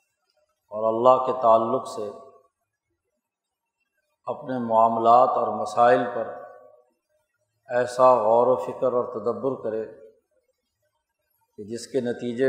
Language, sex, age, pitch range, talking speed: Urdu, male, 50-69, 120-150 Hz, 100 wpm